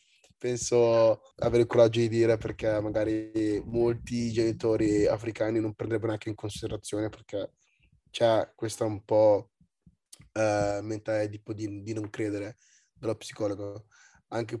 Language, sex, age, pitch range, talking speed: Italian, male, 20-39, 105-115 Hz, 130 wpm